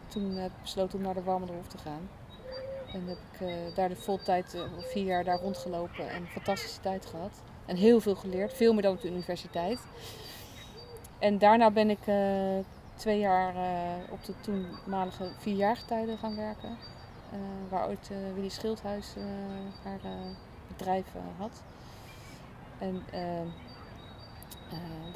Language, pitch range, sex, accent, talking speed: Dutch, 180-205 Hz, female, Dutch, 160 wpm